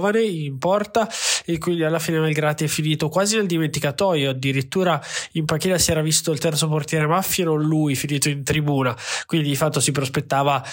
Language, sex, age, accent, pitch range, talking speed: Italian, male, 20-39, native, 140-160 Hz, 175 wpm